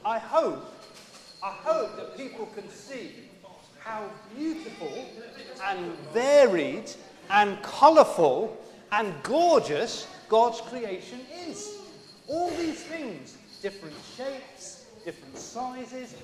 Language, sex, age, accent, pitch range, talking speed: English, male, 40-59, British, 200-270 Hz, 95 wpm